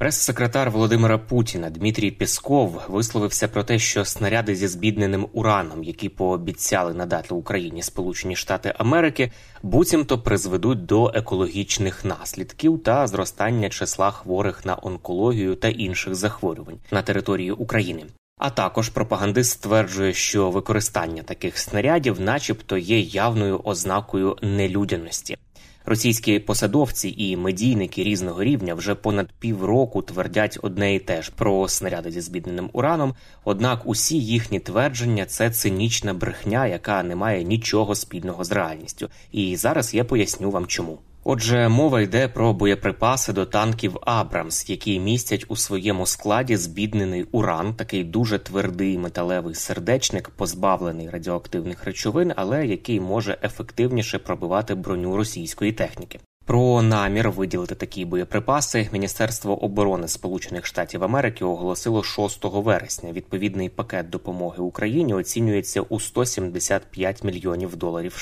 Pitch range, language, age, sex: 95-115 Hz, Ukrainian, 20-39, male